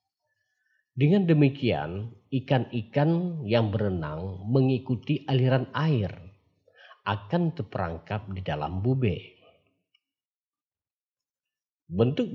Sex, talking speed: male, 70 wpm